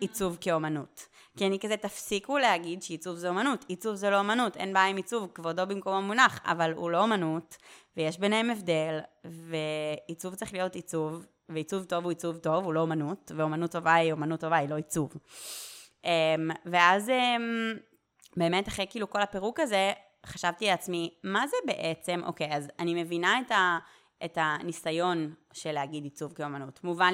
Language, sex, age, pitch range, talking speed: Hebrew, female, 20-39, 160-190 Hz, 165 wpm